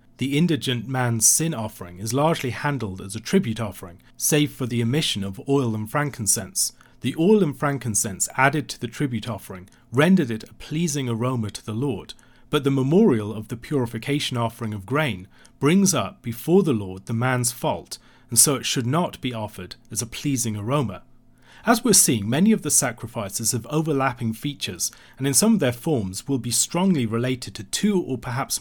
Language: English